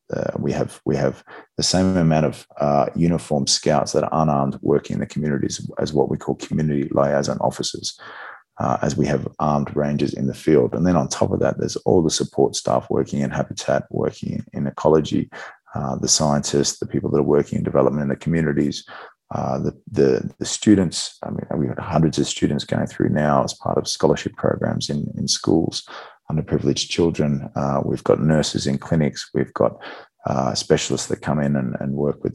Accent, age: Australian, 30-49